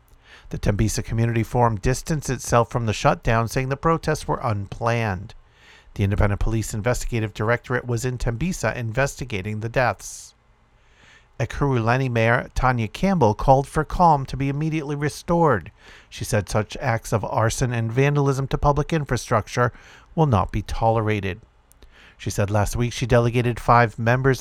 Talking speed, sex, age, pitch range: 145 wpm, male, 50-69, 105-135 Hz